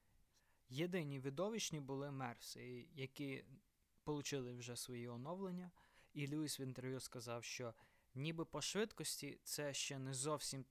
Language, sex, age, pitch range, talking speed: Ukrainian, male, 20-39, 125-150 Hz, 125 wpm